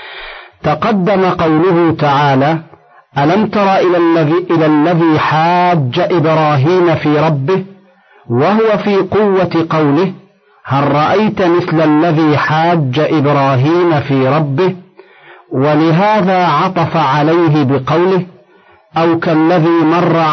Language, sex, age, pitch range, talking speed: Arabic, male, 50-69, 155-185 Hz, 90 wpm